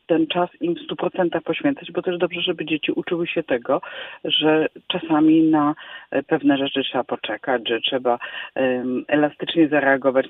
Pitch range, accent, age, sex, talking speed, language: 135-180 Hz, native, 40-59, female, 150 wpm, Polish